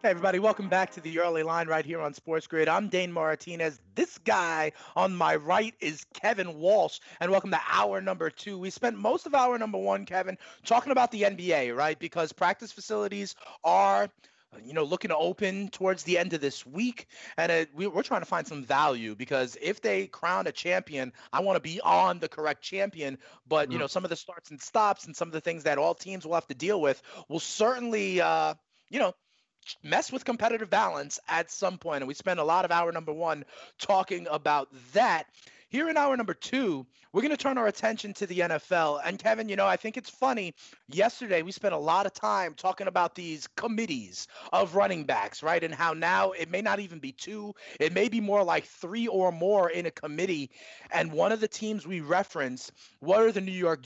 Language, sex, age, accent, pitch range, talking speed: English, male, 30-49, American, 160-205 Hz, 220 wpm